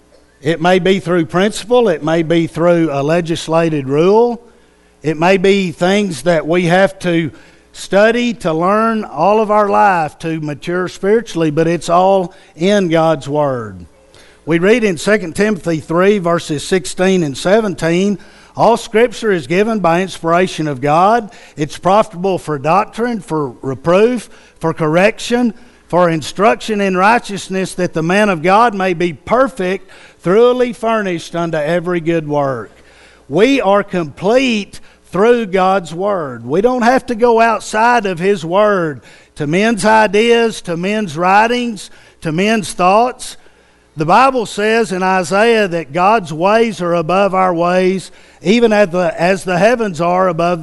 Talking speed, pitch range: 145 wpm, 165-210 Hz